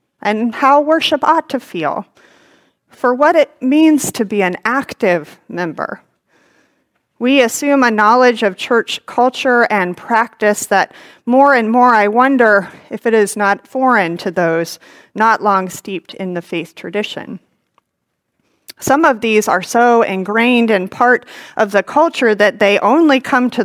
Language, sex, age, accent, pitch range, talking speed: English, female, 40-59, American, 200-260 Hz, 150 wpm